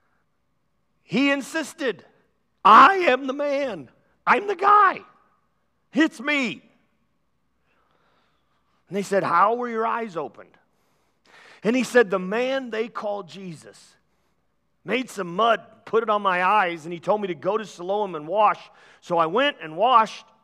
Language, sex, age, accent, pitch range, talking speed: English, male, 50-69, American, 190-260 Hz, 145 wpm